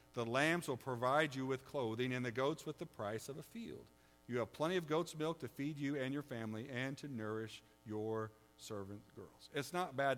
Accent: American